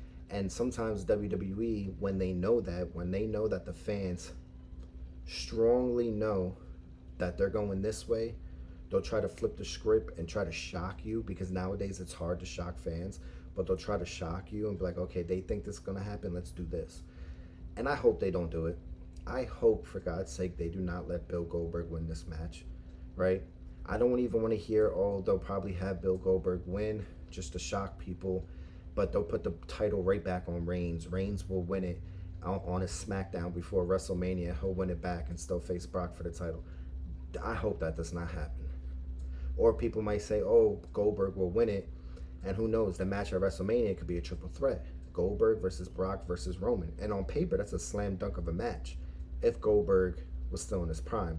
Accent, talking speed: American, 205 wpm